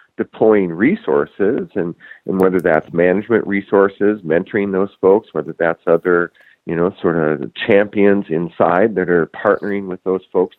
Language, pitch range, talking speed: English, 90-105 Hz, 145 wpm